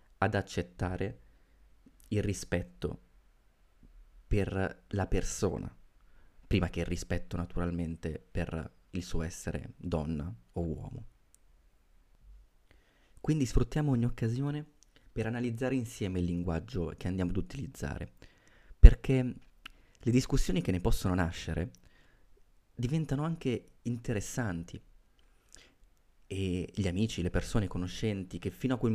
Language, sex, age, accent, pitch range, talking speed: Italian, male, 30-49, native, 90-115 Hz, 110 wpm